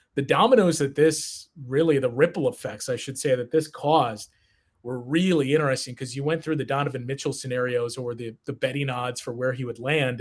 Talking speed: 205 wpm